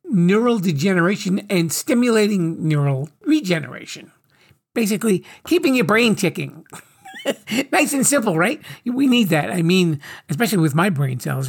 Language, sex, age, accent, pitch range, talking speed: English, male, 50-69, American, 165-210 Hz, 130 wpm